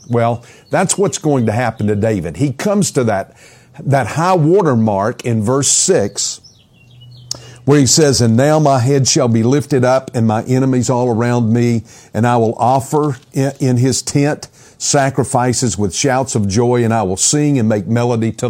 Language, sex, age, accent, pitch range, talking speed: English, male, 50-69, American, 115-145 Hz, 185 wpm